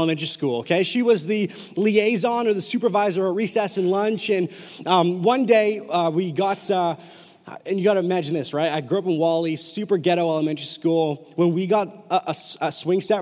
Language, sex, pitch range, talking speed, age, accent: English, male, 185-245 Hz, 205 wpm, 30-49, American